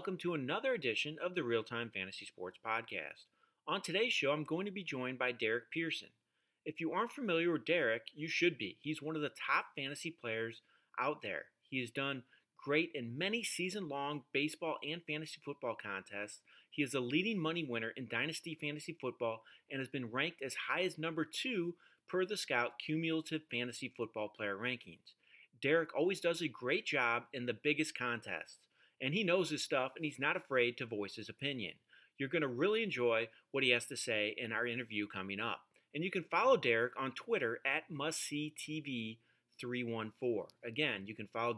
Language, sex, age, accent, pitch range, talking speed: English, male, 30-49, American, 120-165 Hz, 190 wpm